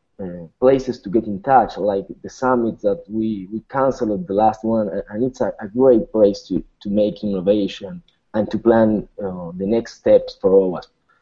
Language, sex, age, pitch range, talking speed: English, male, 20-39, 105-125 Hz, 185 wpm